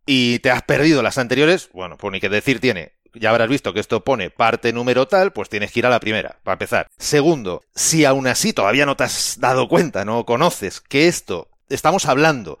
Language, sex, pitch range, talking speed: Spanish, male, 120-160 Hz, 220 wpm